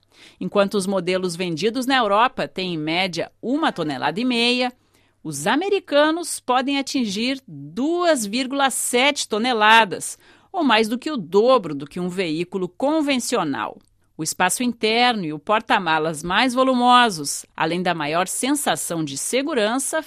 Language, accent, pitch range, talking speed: Portuguese, Brazilian, 180-265 Hz, 130 wpm